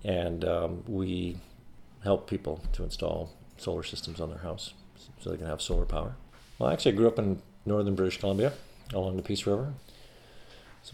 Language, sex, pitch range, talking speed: English, male, 85-105 Hz, 175 wpm